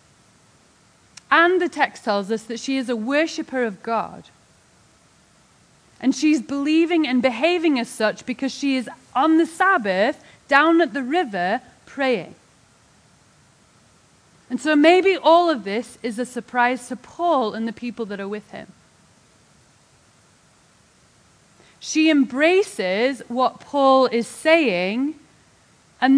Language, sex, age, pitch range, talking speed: English, female, 30-49, 230-305 Hz, 125 wpm